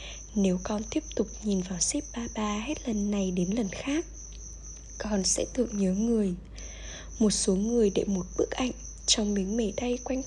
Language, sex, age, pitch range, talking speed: Vietnamese, female, 10-29, 195-240 Hz, 185 wpm